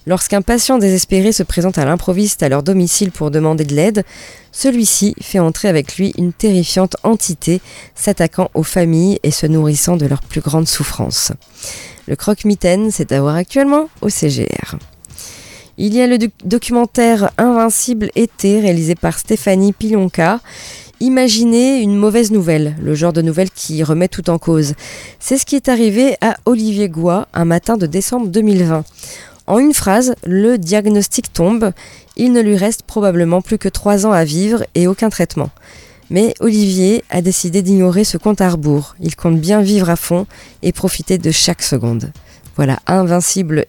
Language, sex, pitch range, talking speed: French, female, 170-220 Hz, 165 wpm